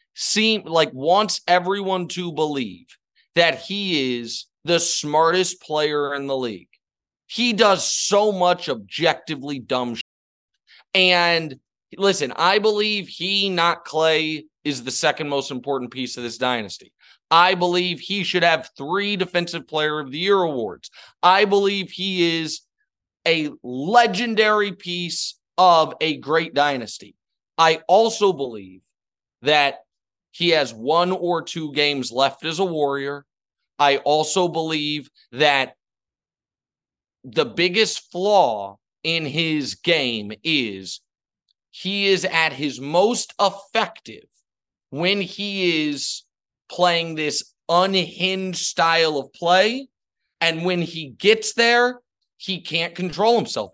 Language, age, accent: English, 30-49, American